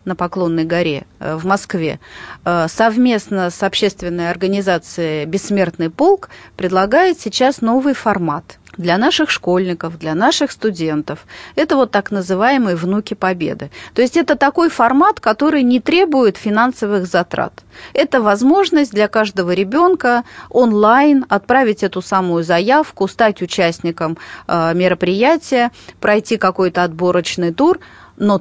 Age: 30-49